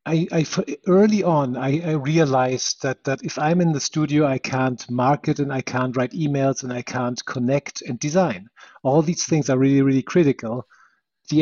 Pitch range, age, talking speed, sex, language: 135-165 Hz, 50-69, 190 wpm, male, English